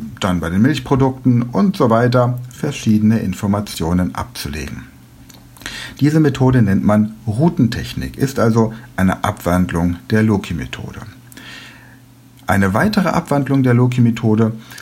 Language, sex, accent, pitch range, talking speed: German, male, German, 105-130 Hz, 105 wpm